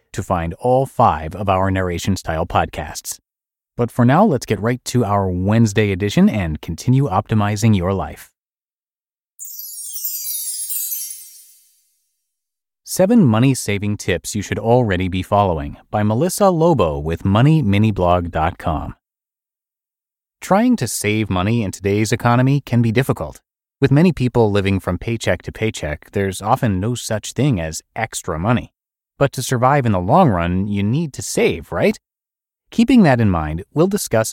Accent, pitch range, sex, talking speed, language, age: American, 95-125 Hz, male, 140 wpm, English, 30-49